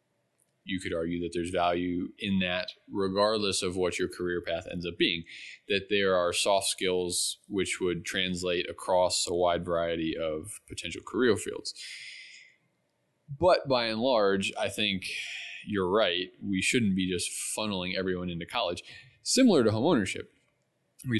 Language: English